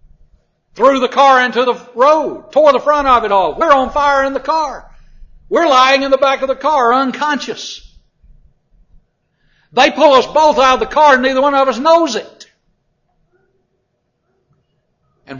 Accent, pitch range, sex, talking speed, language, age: American, 170-270 Hz, male, 170 wpm, English, 60-79